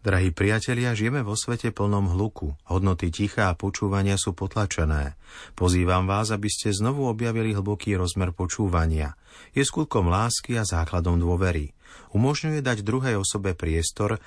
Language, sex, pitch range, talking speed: Slovak, male, 90-115 Hz, 140 wpm